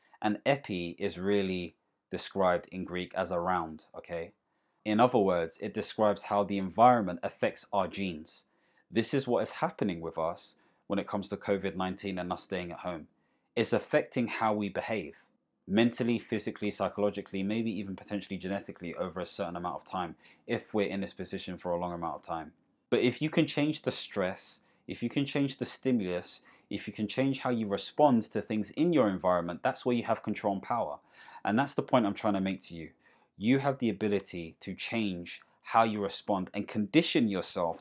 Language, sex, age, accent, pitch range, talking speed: English, male, 20-39, British, 95-115 Hz, 190 wpm